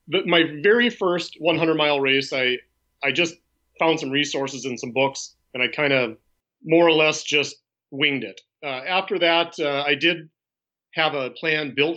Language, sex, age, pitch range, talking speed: English, male, 30-49, 130-160 Hz, 175 wpm